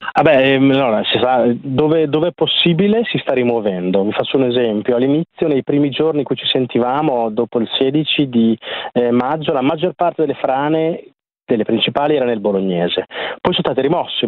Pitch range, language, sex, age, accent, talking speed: 115-140 Hz, Italian, male, 30-49, native, 190 wpm